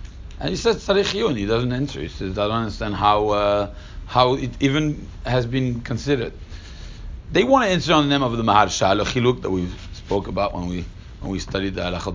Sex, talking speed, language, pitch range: male, 205 wpm, English, 100-140 Hz